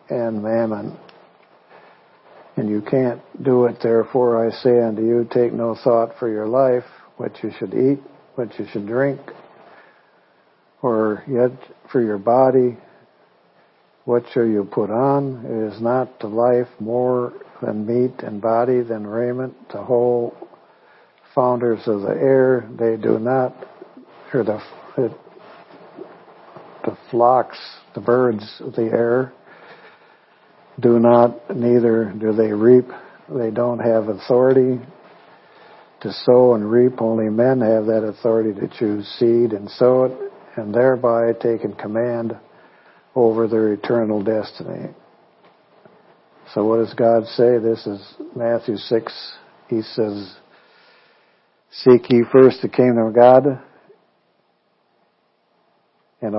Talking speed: 125 wpm